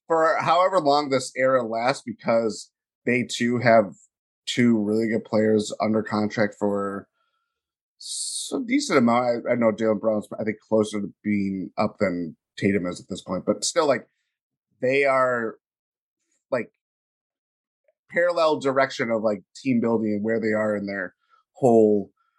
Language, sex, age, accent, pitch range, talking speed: English, male, 30-49, American, 105-140 Hz, 145 wpm